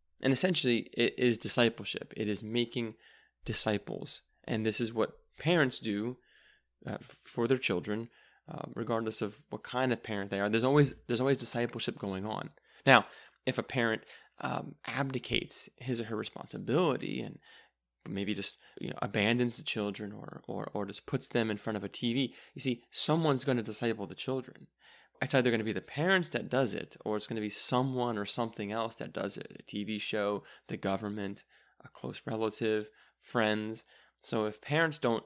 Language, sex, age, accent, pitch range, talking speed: English, male, 20-39, American, 105-125 Hz, 180 wpm